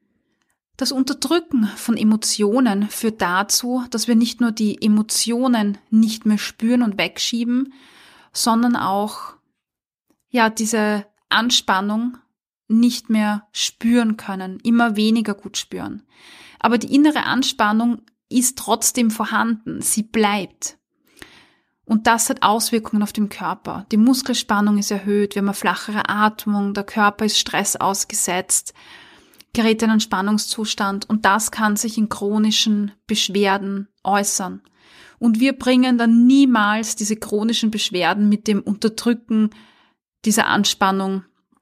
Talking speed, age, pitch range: 120 wpm, 20-39, 205-230 Hz